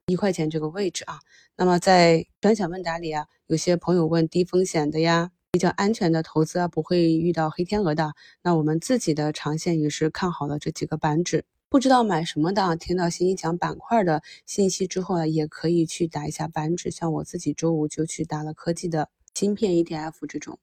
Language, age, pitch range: Chinese, 20-39, 155-180 Hz